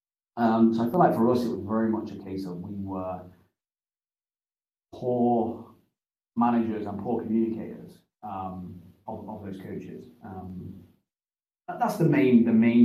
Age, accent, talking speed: 30-49, British, 155 wpm